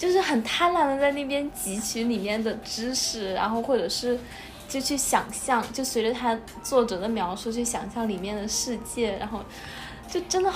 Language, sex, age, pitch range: Chinese, female, 10-29, 215-275 Hz